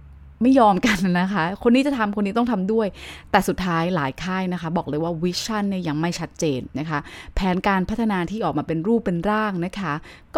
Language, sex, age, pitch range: Thai, female, 20-39, 160-215 Hz